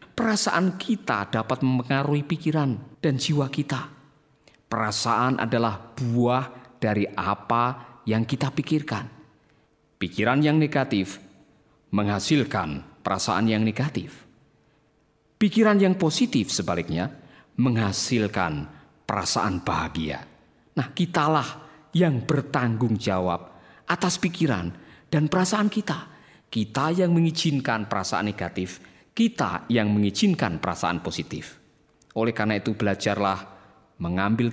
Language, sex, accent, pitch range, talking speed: Indonesian, male, native, 105-145 Hz, 95 wpm